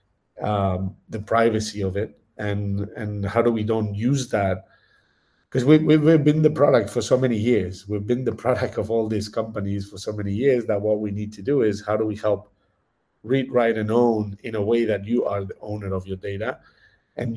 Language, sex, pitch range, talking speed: English, male, 100-115 Hz, 210 wpm